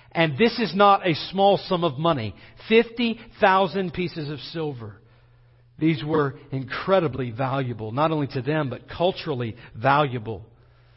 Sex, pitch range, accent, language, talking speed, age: male, 130-205 Hz, American, English, 130 wpm, 50-69